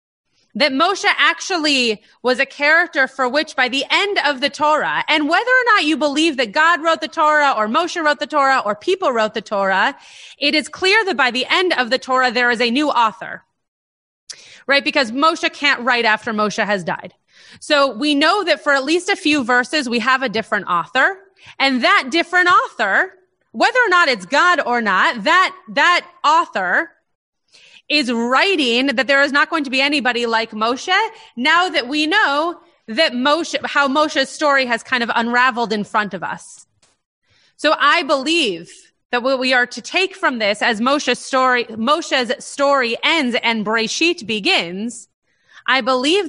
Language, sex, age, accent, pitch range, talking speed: English, female, 30-49, American, 240-315 Hz, 180 wpm